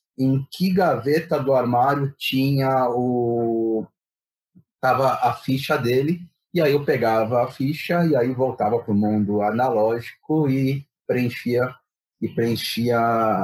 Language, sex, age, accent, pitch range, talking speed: Portuguese, male, 40-59, Brazilian, 115-145 Hz, 125 wpm